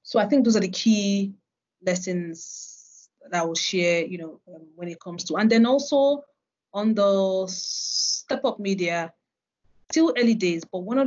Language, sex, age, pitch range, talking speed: English, female, 30-49, 175-205 Hz, 180 wpm